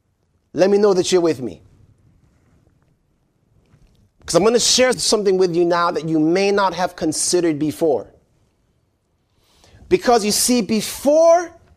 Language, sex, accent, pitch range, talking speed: English, male, American, 170-260 Hz, 140 wpm